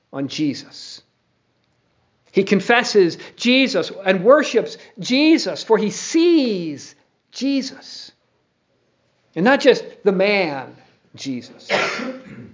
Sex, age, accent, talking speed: male, 50-69, American, 85 wpm